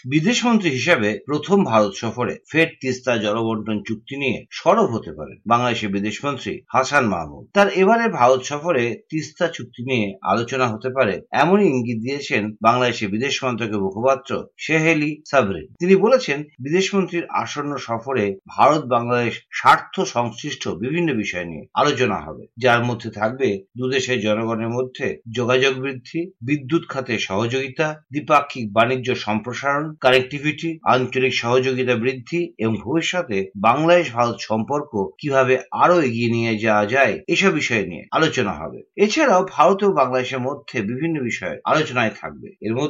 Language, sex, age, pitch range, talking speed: Bengali, male, 50-69, 115-160 Hz, 100 wpm